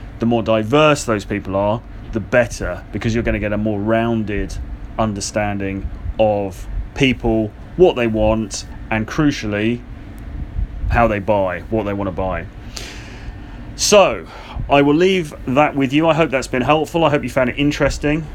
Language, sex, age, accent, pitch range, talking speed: English, male, 30-49, British, 110-130 Hz, 165 wpm